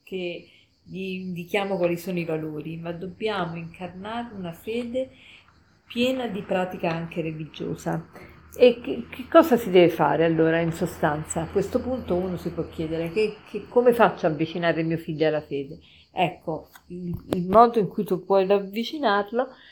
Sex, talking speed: female, 160 wpm